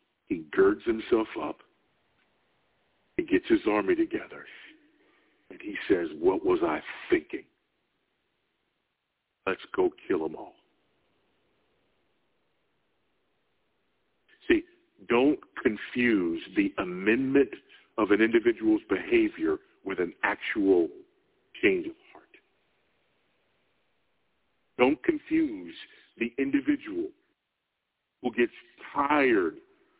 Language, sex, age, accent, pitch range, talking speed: English, male, 50-69, American, 320-365 Hz, 85 wpm